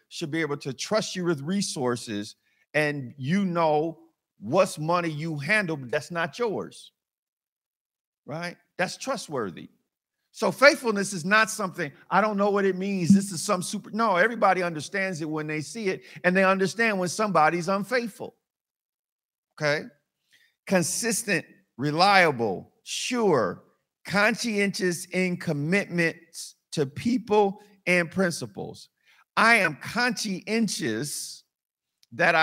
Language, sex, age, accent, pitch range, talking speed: English, male, 50-69, American, 150-200 Hz, 120 wpm